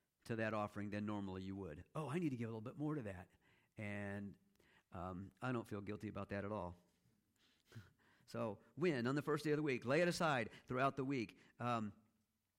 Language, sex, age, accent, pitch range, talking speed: English, male, 50-69, American, 105-140 Hz, 210 wpm